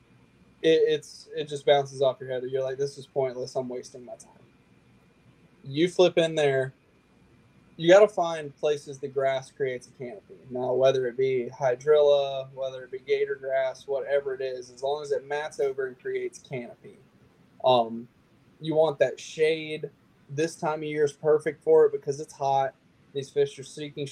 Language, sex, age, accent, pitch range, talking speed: English, male, 20-39, American, 130-160 Hz, 180 wpm